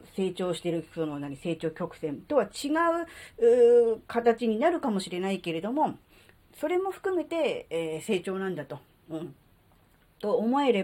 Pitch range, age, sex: 160-235 Hz, 40-59, female